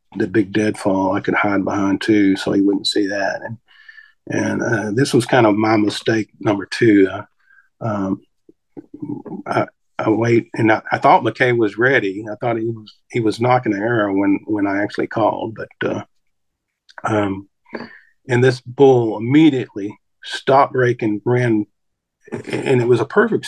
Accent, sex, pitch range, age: American, male, 105-130 Hz, 50-69